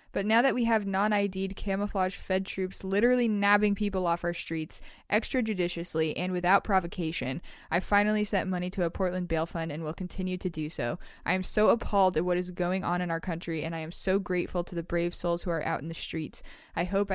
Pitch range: 170-200 Hz